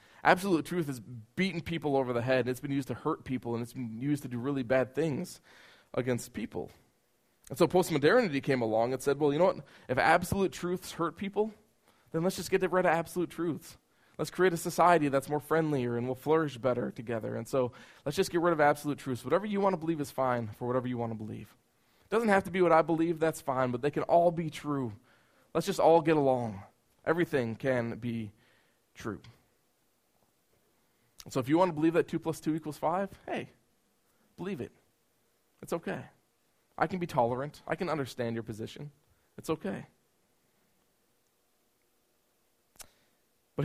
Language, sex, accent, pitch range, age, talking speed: English, male, American, 120-165 Hz, 20-39, 190 wpm